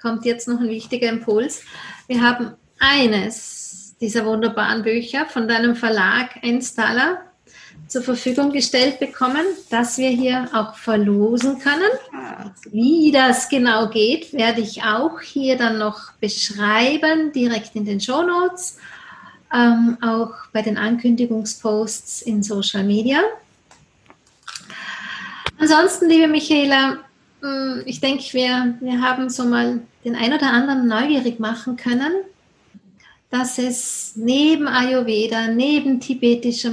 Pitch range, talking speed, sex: 225-265 Hz, 115 wpm, female